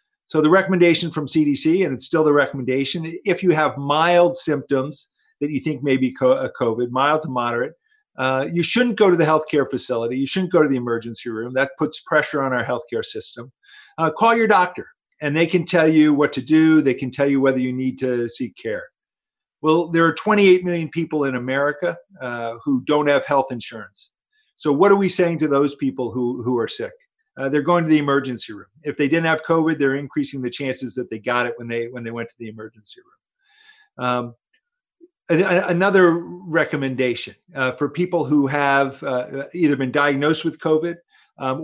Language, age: English, 50-69